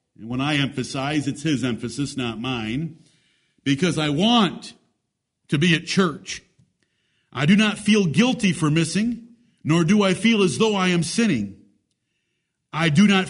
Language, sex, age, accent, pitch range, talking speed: English, male, 50-69, American, 160-210 Hz, 160 wpm